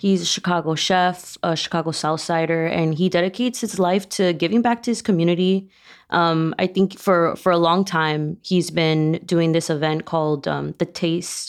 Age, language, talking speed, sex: 20-39, English, 185 wpm, female